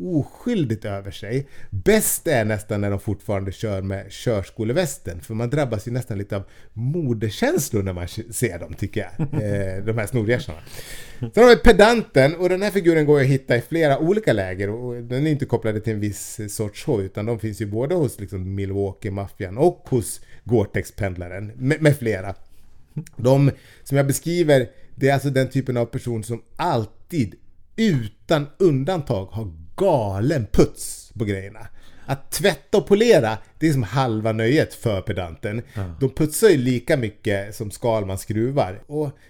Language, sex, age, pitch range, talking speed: Swedish, male, 30-49, 105-140 Hz, 170 wpm